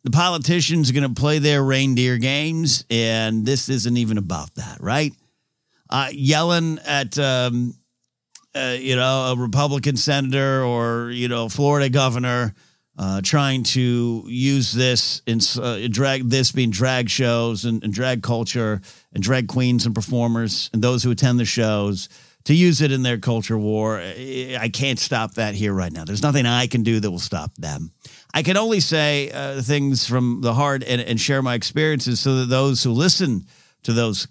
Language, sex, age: English, male, 50-69